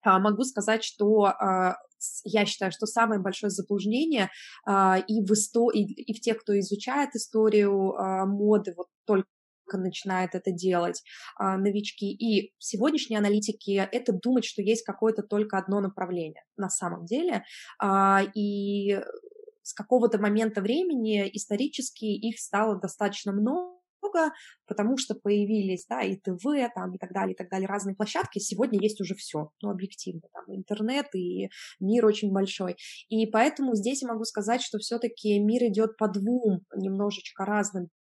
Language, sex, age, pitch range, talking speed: Russian, female, 20-39, 195-225 Hz, 145 wpm